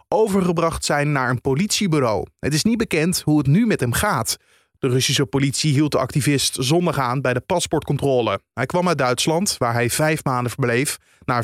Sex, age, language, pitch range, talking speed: male, 30-49, Dutch, 130-175 Hz, 190 wpm